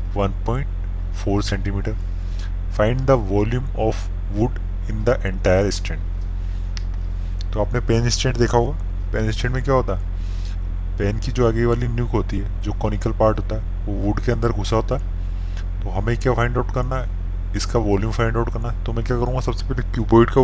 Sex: male